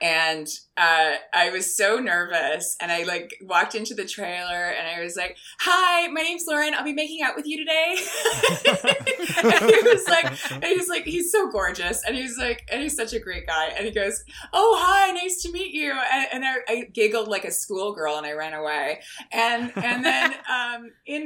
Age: 20-39